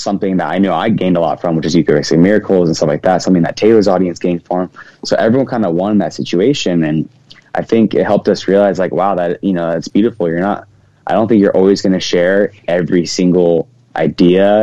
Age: 20-39